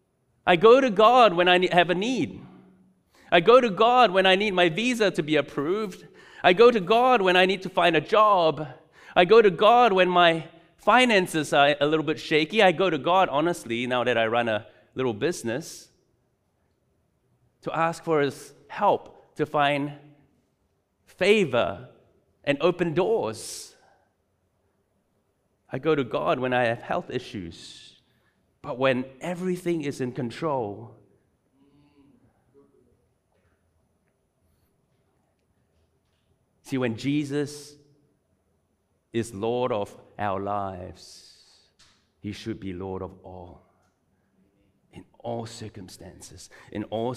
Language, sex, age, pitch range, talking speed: English, male, 30-49, 105-175 Hz, 130 wpm